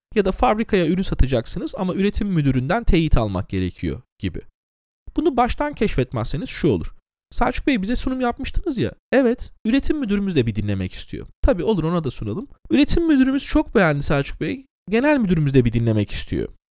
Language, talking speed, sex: Turkish, 170 wpm, male